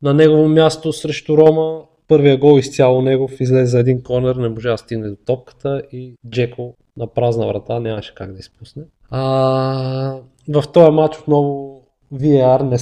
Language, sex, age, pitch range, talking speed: Bulgarian, male, 20-39, 115-140 Hz, 165 wpm